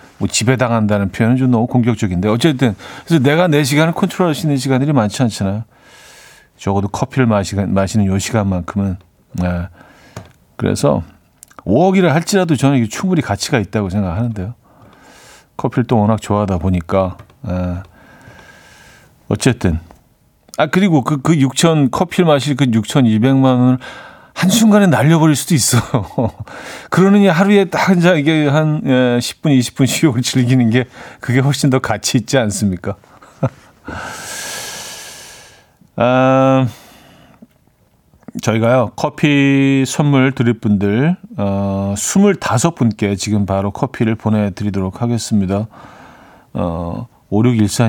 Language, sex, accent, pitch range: Korean, male, native, 105-145 Hz